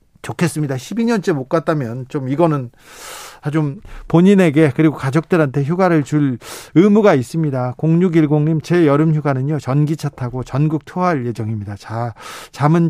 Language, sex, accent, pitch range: Korean, male, native, 140-180 Hz